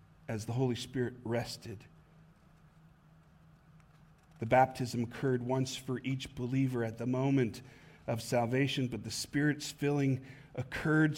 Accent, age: American, 40-59